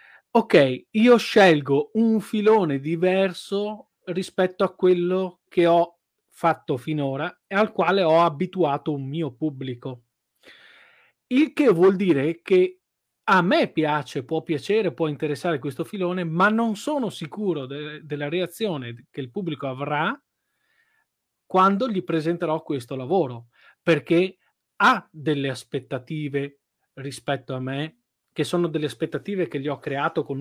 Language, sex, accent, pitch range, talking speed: Italian, male, native, 140-190 Hz, 130 wpm